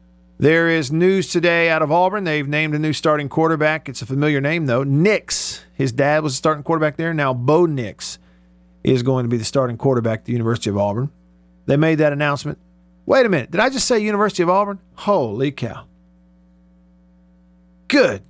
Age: 50-69